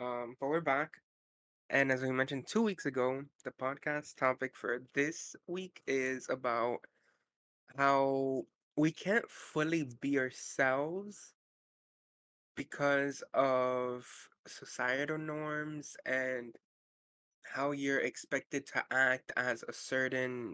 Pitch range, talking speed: 130-150 Hz, 110 wpm